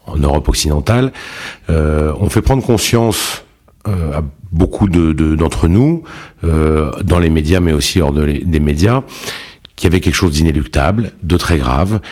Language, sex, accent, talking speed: French, male, French, 170 wpm